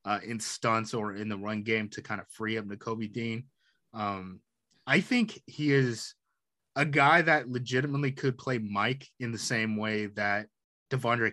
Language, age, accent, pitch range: English, 20-39, American, 105-130 Hz